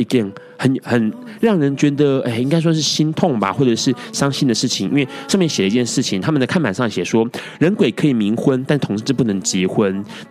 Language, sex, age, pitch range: Chinese, male, 30-49, 110-155 Hz